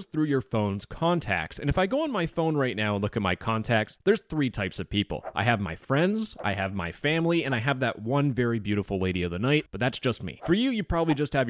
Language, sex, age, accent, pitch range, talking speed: English, male, 30-49, American, 110-165 Hz, 270 wpm